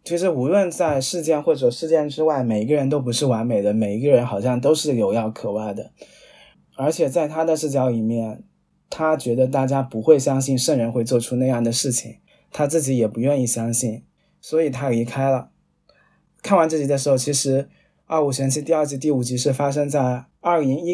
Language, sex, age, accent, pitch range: Chinese, male, 20-39, native, 120-150 Hz